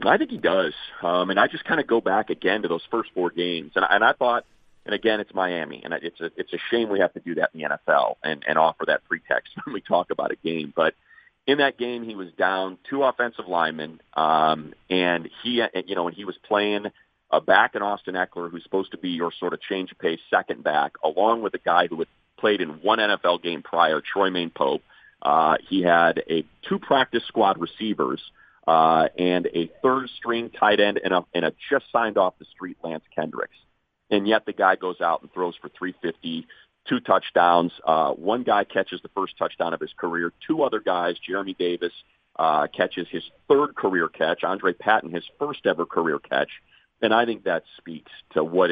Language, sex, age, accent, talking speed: English, male, 40-59, American, 210 wpm